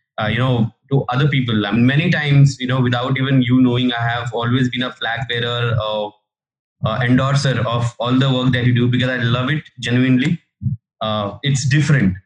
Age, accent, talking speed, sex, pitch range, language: 20-39, Indian, 205 wpm, male, 115-135 Hz, English